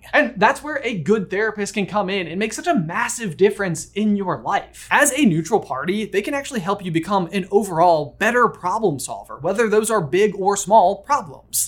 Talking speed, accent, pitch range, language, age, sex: 205 wpm, American, 180-230 Hz, English, 20-39, male